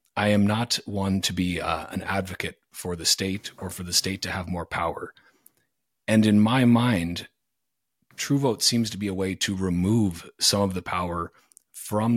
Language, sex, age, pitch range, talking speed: English, male, 30-49, 90-115 Hz, 185 wpm